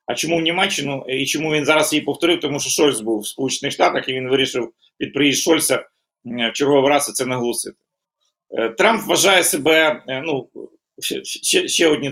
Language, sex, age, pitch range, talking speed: Ukrainian, male, 40-59, 120-165 Hz, 180 wpm